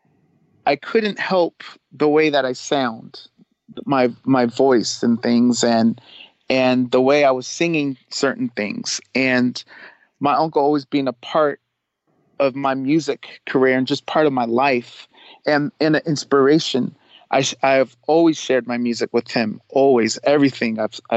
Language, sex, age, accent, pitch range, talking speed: English, male, 40-59, American, 125-160 Hz, 155 wpm